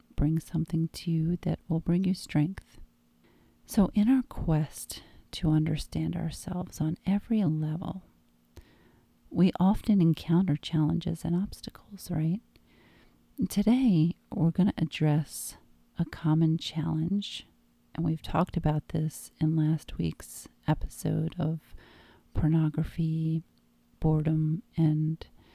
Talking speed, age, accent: 110 wpm, 40-59, American